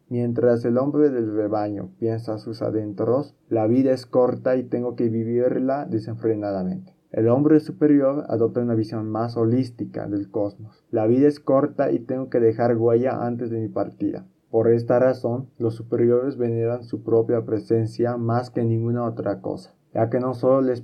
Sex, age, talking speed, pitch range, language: male, 20-39, 170 wpm, 115-125 Hz, Spanish